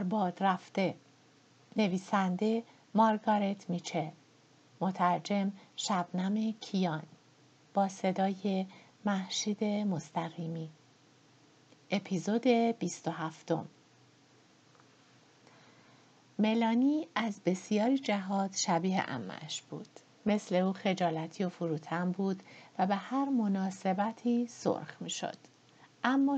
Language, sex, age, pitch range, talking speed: Persian, female, 50-69, 180-225 Hz, 75 wpm